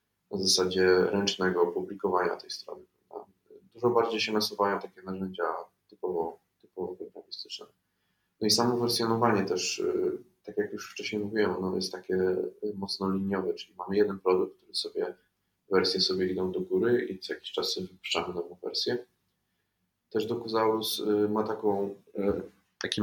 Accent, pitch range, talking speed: native, 95-115 Hz, 145 wpm